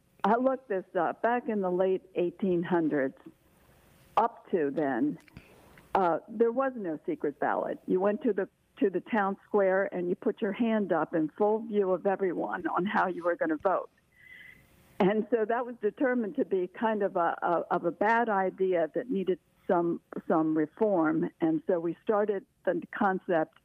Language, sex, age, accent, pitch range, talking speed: English, female, 60-79, American, 175-225 Hz, 180 wpm